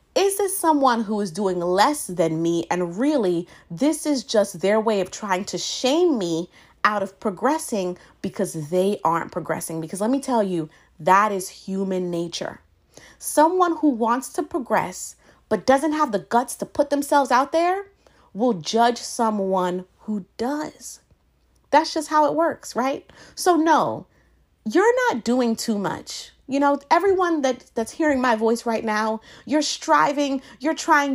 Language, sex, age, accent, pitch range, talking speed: English, female, 30-49, American, 190-295 Hz, 160 wpm